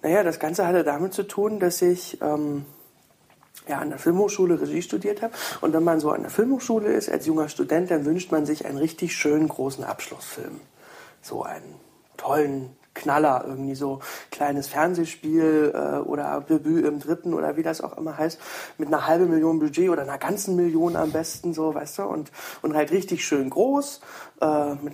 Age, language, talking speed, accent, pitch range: 40-59, German, 185 wpm, German, 145-175 Hz